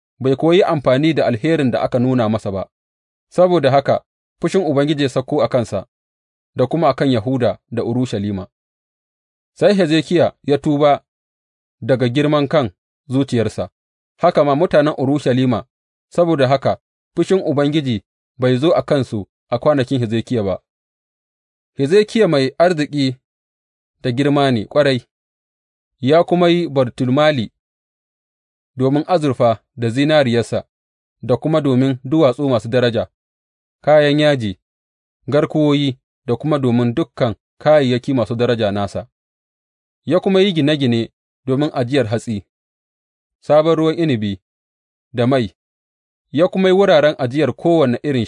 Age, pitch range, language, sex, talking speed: 30-49, 105-150 Hz, English, male, 115 wpm